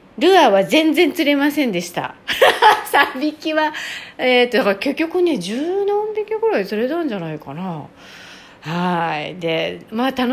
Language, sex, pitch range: Japanese, female, 180-300 Hz